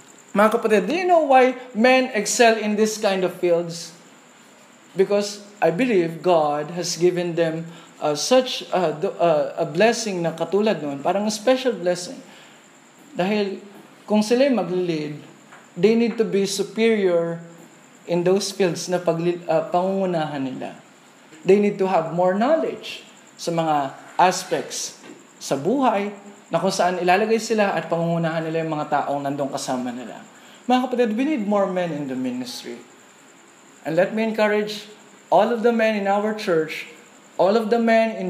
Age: 20-39